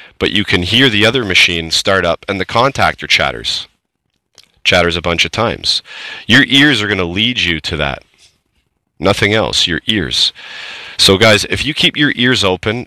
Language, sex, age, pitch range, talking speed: English, male, 30-49, 95-115 Hz, 180 wpm